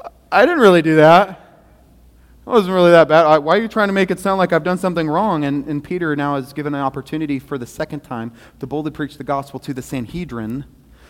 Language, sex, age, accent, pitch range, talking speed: English, male, 30-49, American, 145-205 Hz, 240 wpm